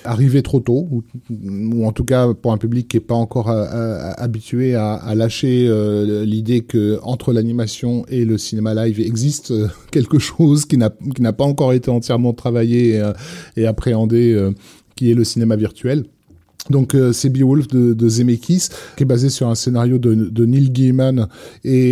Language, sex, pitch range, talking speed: French, male, 110-125 Hz, 190 wpm